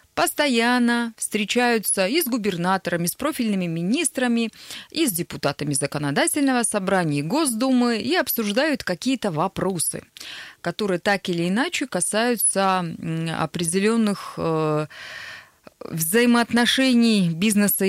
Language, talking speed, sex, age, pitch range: Russian, 95 wpm, female, 20-39, 160-235 Hz